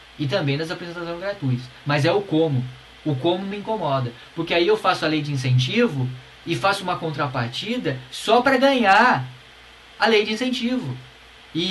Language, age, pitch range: Portuguese, 10-29, 130-195 Hz